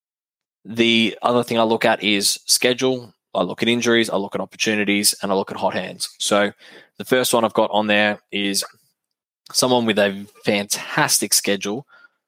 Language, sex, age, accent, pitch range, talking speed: English, male, 10-29, Australian, 100-115 Hz, 175 wpm